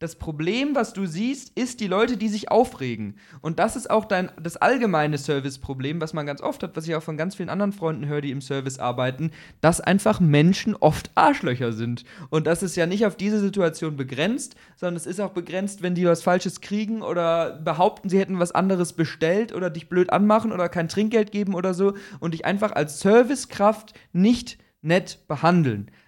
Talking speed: 200 wpm